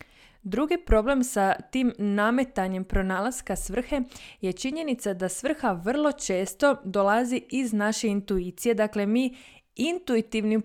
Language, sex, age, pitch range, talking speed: Croatian, female, 20-39, 200-245 Hz, 115 wpm